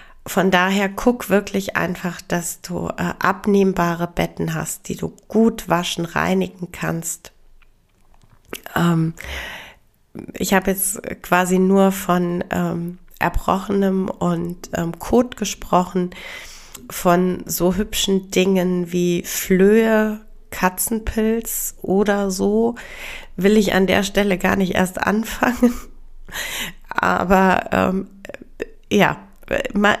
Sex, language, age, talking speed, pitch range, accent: female, German, 30-49, 105 wpm, 180-215 Hz, German